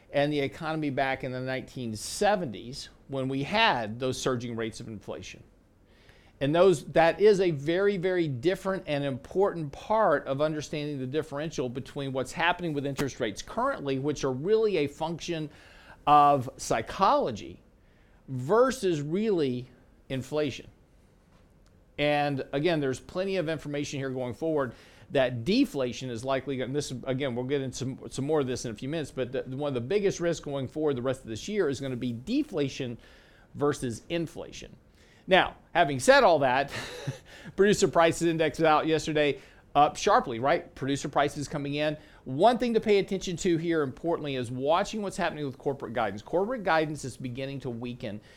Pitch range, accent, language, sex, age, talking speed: 130-165 Hz, American, English, male, 50-69, 165 wpm